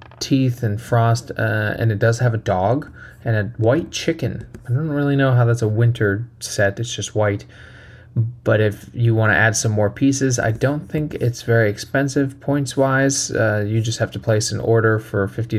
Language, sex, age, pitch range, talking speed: English, male, 20-39, 110-130 Hz, 205 wpm